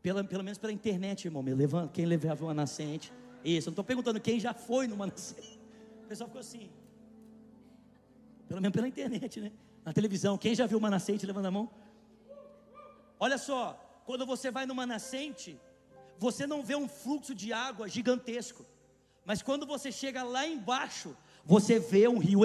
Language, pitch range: Portuguese, 195-270 Hz